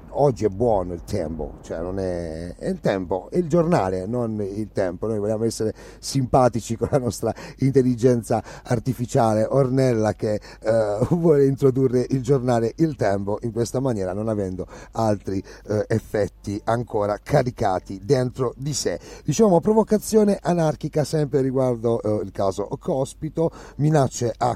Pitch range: 105-140 Hz